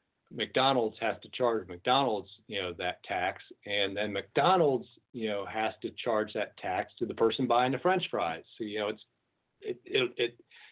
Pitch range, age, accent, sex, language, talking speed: 105-140 Hz, 50-69, American, male, English, 180 wpm